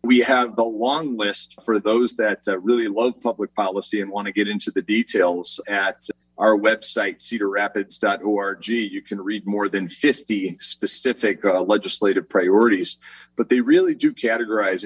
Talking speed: 160 wpm